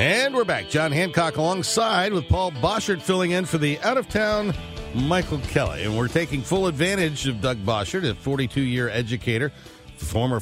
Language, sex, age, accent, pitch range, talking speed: English, male, 50-69, American, 95-135 Hz, 180 wpm